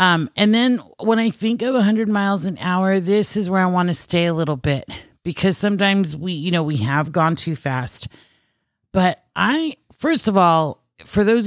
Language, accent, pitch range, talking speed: English, American, 150-200 Hz, 205 wpm